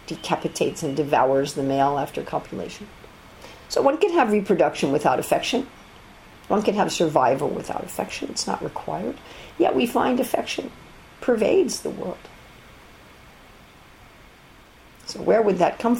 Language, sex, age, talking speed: English, female, 50-69, 130 wpm